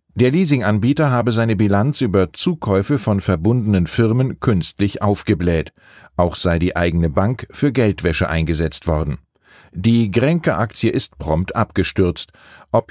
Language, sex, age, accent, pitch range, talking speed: German, male, 50-69, German, 90-120 Hz, 130 wpm